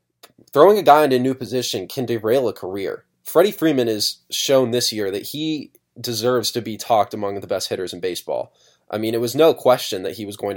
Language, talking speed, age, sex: English, 220 wpm, 20-39, male